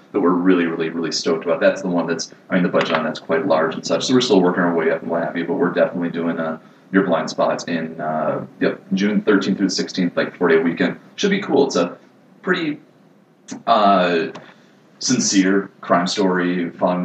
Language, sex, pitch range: English, male, 85-95 Hz